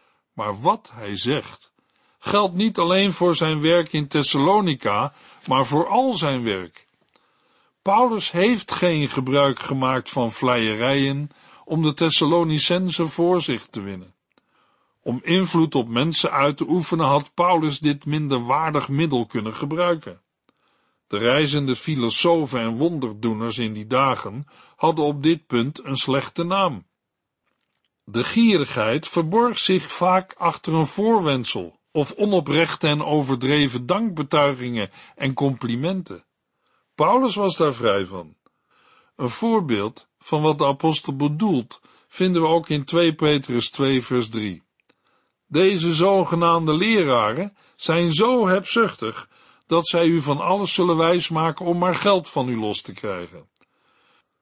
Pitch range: 135-175 Hz